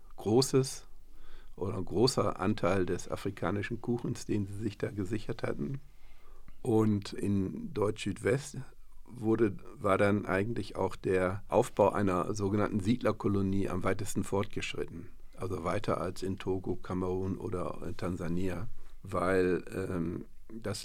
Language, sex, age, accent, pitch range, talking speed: German, male, 50-69, German, 95-110 Hz, 110 wpm